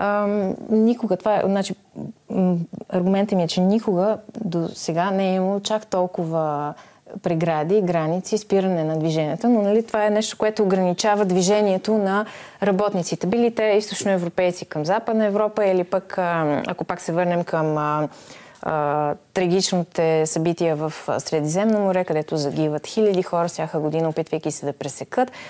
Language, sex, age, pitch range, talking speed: Bulgarian, female, 30-49, 165-215 Hz, 145 wpm